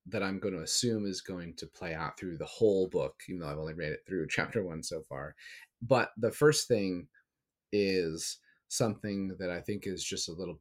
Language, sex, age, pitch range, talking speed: English, male, 30-49, 80-100 Hz, 215 wpm